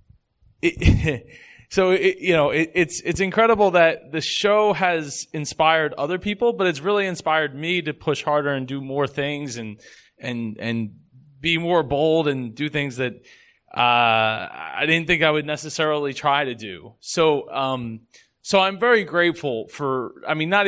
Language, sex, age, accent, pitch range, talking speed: English, male, 20-39, American, 130-170 Hz, 170 wpm